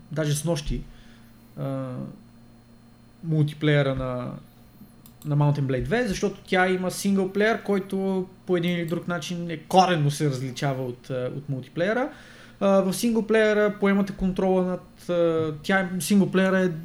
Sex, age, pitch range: male, 20-39, 140-180 Hz